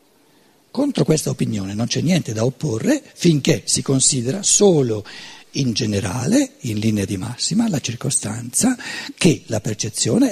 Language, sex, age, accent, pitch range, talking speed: Italian, male, 50-69, native, 150-235 Hz, 135 wpm